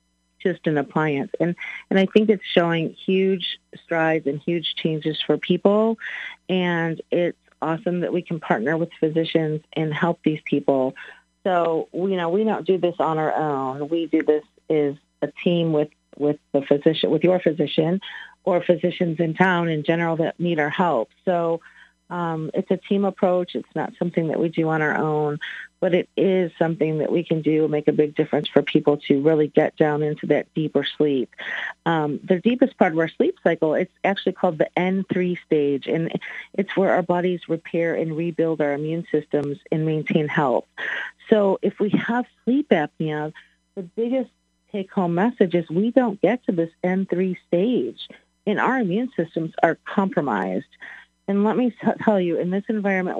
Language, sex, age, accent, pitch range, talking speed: English, female, 40-59, American, 155-185 Hz, 180 wpm